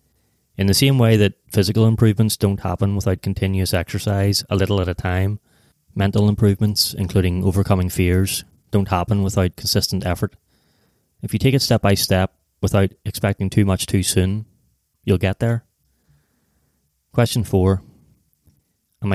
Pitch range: 95-110 Hz